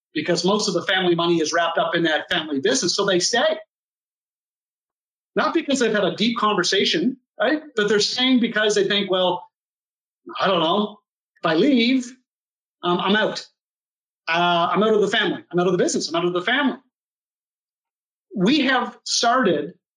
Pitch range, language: 185-255 Hz, English